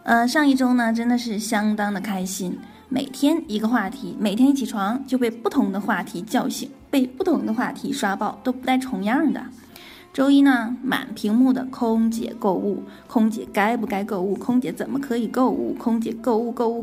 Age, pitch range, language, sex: 20-39, 215-260 Hz, Chinese, female